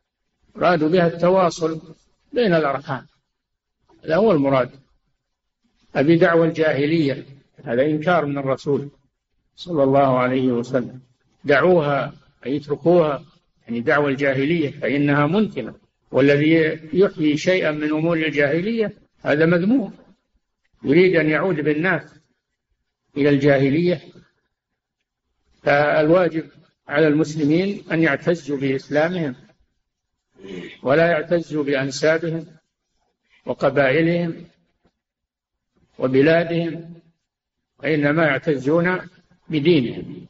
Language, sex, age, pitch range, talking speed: Arabic, male, 60-79, 140-165 Hz, 80 wpm